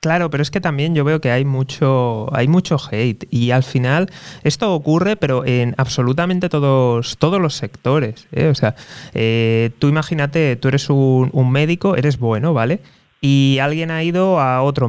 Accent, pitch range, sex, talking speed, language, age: Spanish, 125-155 Hz, male, 175 wpm, Spanish, 20-39